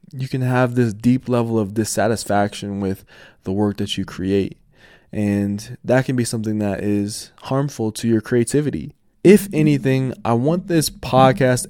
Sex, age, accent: male, 20-39, American